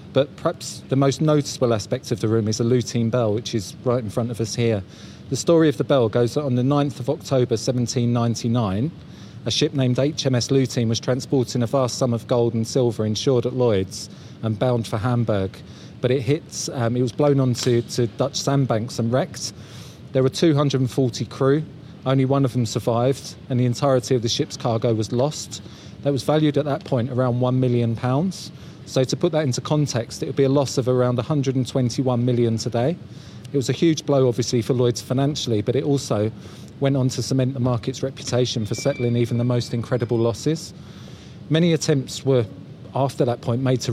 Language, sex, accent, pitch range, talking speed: English, male, British, 120-140 Hz, 200 wpm